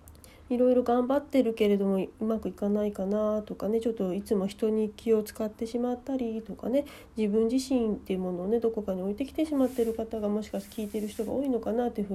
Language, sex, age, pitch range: Japanese, female, 40-59, 205-265 Hz